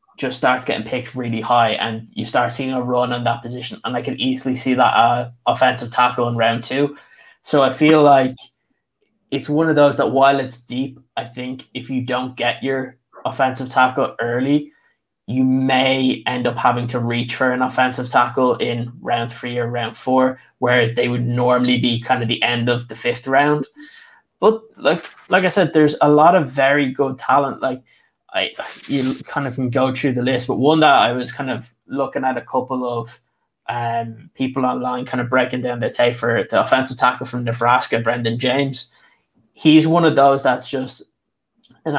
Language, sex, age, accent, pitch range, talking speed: English, male, 20-39, Irish, 120-135 Hz, 195 wpm